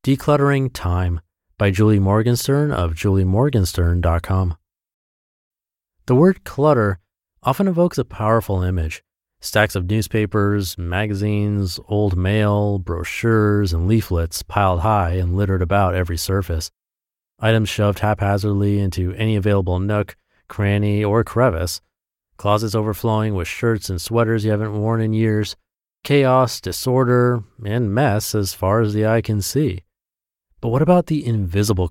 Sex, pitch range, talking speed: male, 90-115 Hz, 130 wpm